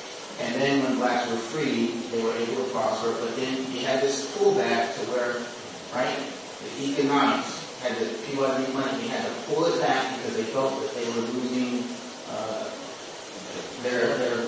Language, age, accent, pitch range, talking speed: English, 20-39, American, 115-140 Hz, 190 wpm